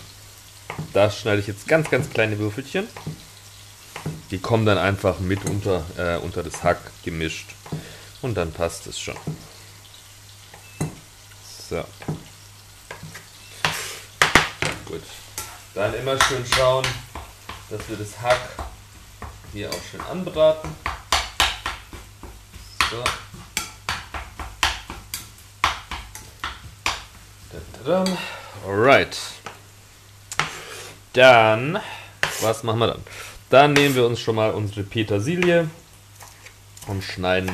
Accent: German